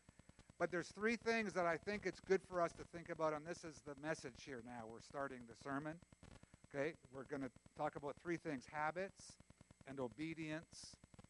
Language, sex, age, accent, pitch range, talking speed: English, male, 60-79, American, 130-175 Hz, 190 wpm